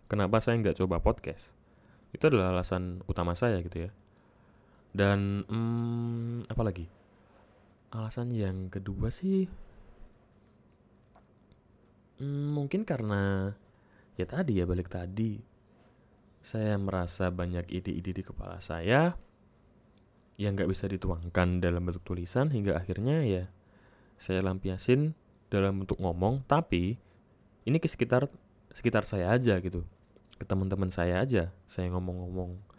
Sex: male